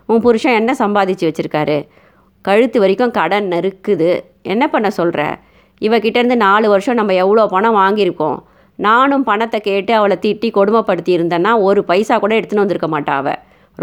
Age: 30-49